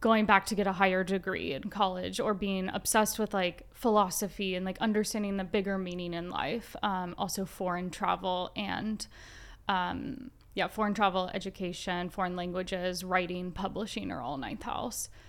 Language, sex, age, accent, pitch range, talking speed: English, female, 10-29, American, 190-220 Hz, 160 wpm